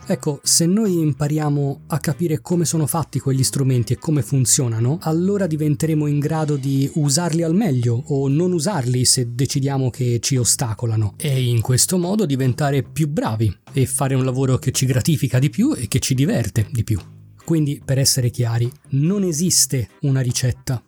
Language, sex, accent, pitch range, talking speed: Italian, male, native, 125-160 Hz, 170 wpm